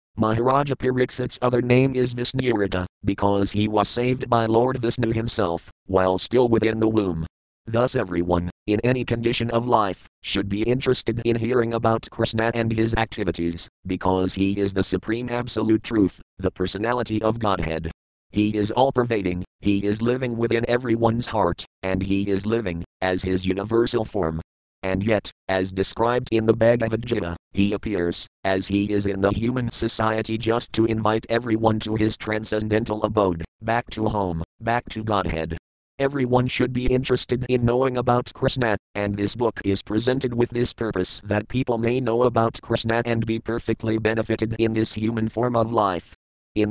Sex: male